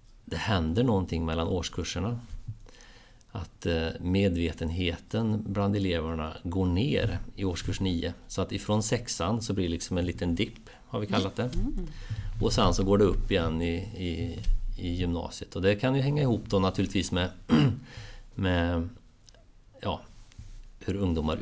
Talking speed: 150 wpm